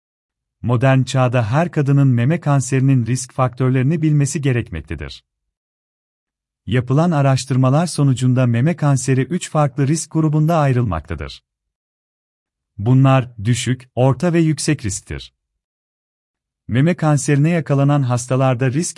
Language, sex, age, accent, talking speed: Turkish, male, 40-59, native, 100 wpm